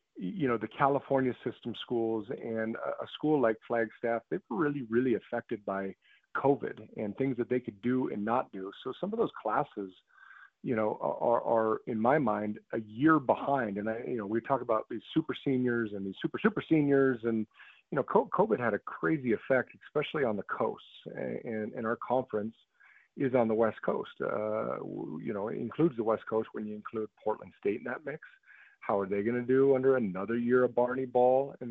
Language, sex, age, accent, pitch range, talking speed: English, male, 40-59, American, 110-140 Hz, 200 wpm